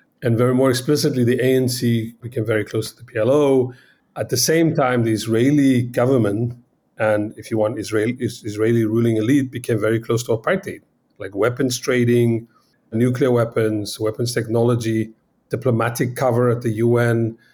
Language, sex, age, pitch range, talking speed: English, male, 30-49, 110-125 Hz, 145 wpm